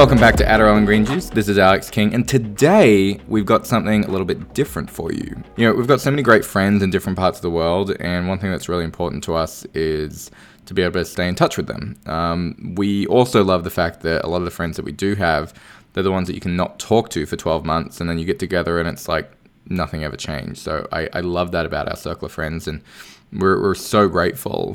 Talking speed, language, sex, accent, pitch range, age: 260 wpm, English, male, Australian, 85-105 Hz, 20-39